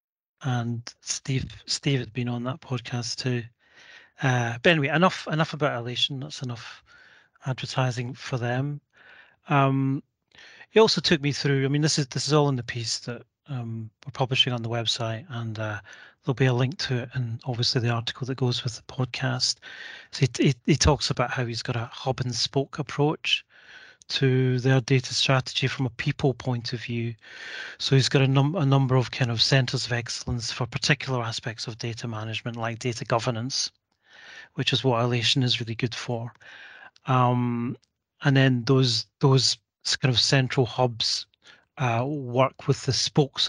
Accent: British